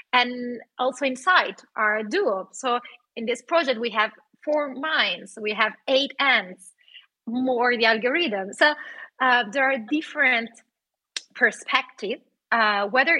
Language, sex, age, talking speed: English, female, 30-49, 125 wpm